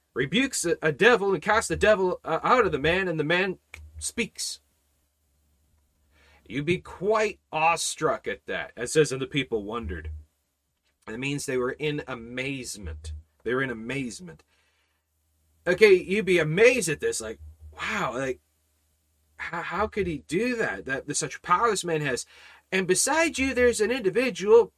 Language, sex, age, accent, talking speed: English, male, 30-49, American, 155 wpm